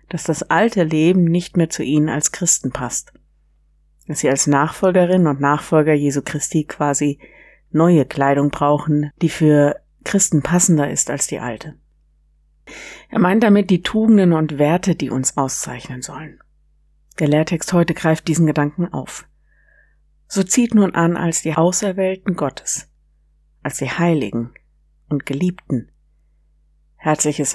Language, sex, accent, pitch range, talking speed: German, female, German, 130-170 Hz, 135 wpm